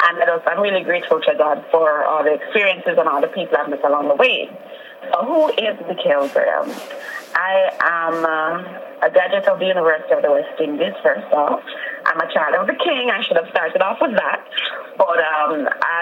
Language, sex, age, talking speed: English, female, 20-39, 215 wpm